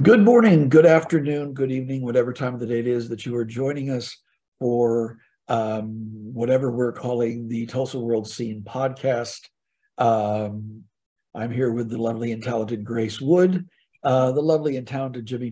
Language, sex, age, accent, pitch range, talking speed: English, male, 60-79, American, 110-135 Hz, 170 wpm